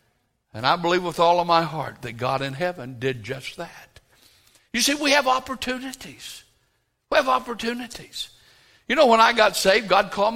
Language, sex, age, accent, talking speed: English, male, 60-79, American, 180 wpm